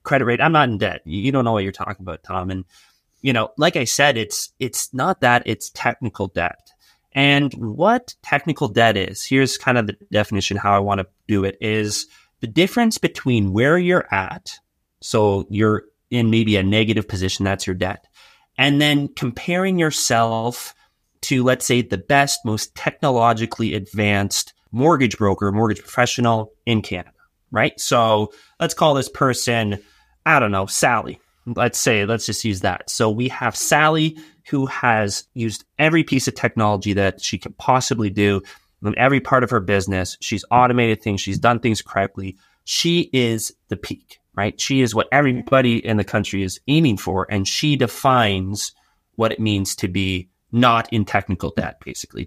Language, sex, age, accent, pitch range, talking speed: English, male, 30-49, American, 100-130 Hz, 175 wpm